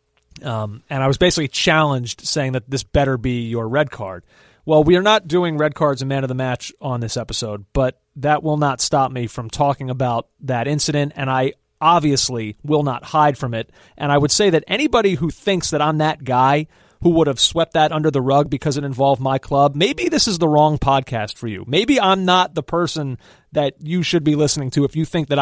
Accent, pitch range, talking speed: American, 140-180 Hz, 225 wpm